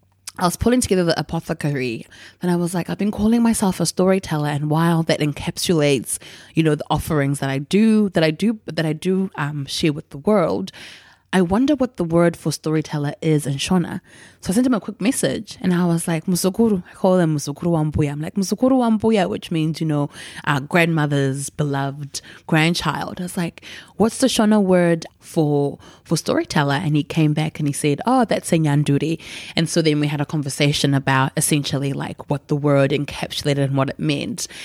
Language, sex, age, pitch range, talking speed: English, female, 20-39, 145-170 Hz, 190 wpm